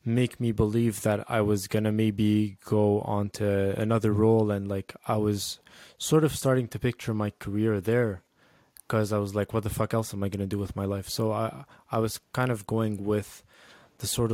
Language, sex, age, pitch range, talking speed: English, male, 20-39, 105-120 Hz, 220 wpm